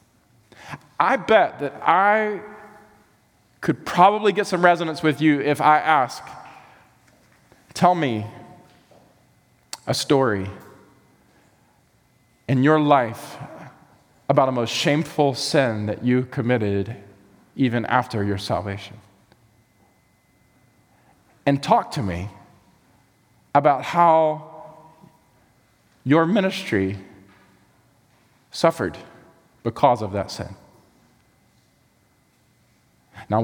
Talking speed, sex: 85 wpm, male